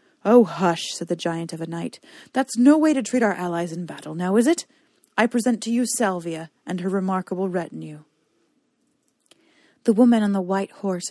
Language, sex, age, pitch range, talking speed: English, female, 30-49, 180-245 Hz, 190 wpm